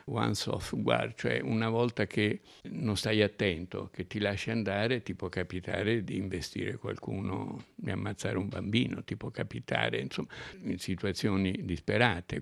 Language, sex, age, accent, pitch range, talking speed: Italian, male, 60-79, native, 95-115 Hz, 150 wpm